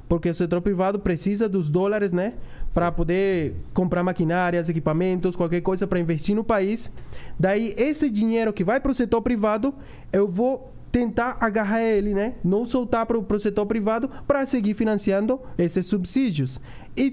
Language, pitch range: Portuguese, 185-230 Hz